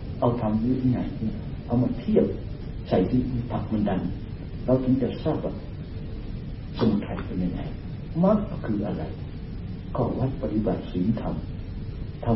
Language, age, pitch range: Thai, 60-79, 100-125 Hz